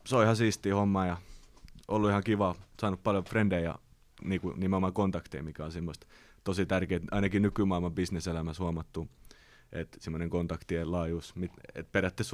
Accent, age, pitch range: native, 30-49, 80-95 Hz